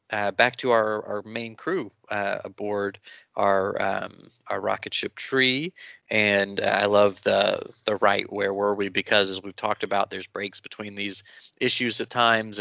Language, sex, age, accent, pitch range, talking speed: English, male, 20-39, American, 100-110 Hz, 175 wpm